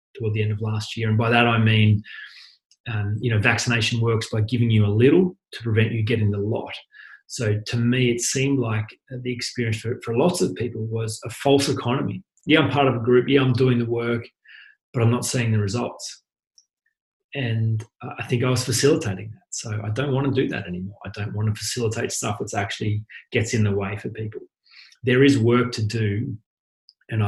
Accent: Australian